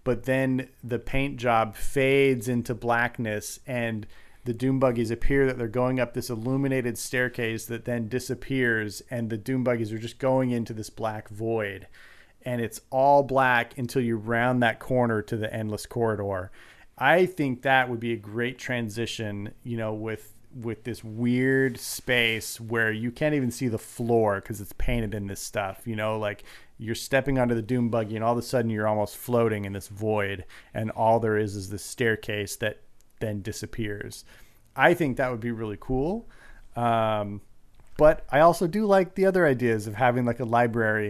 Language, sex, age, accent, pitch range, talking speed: English, male, 30-49, American, 110-125 Hz, 185 wpm